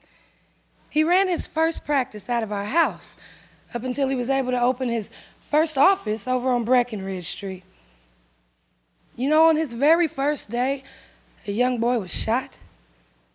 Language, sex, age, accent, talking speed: English, female, 20-39, American, 155 wpm